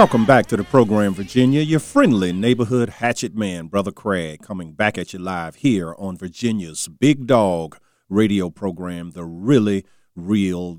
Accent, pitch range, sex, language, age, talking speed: American, 90-110 Hz, male, English, 40-59, 155 wpm